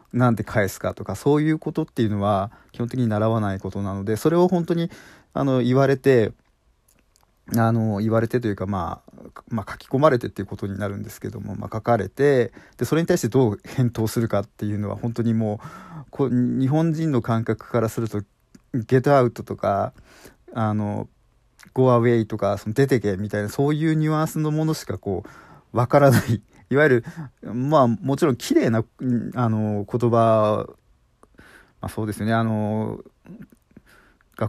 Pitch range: 105-130 Hz